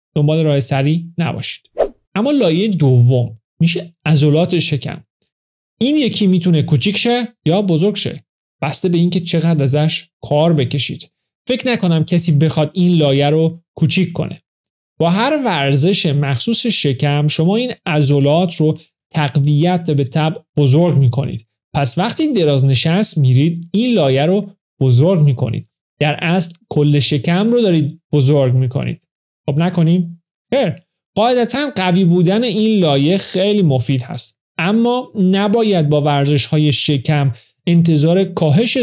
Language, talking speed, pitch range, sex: Persian, 130 wpm, 145-185 Hz, male